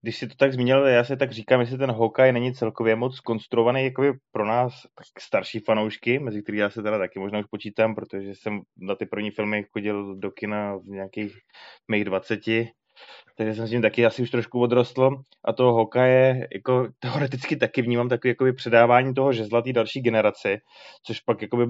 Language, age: Czech, 20-39